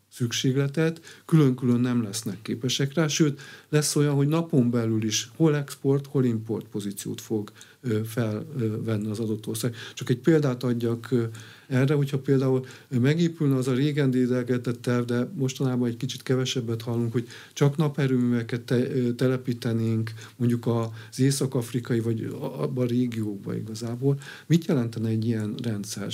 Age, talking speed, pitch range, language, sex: 50-69, 140 wpm, 115-140 Hz, Hungarian, male